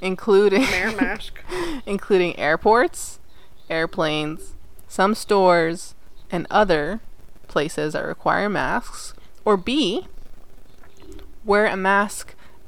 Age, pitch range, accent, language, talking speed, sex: 20-39, 155-185 Hz, American, English, 80 wpm, female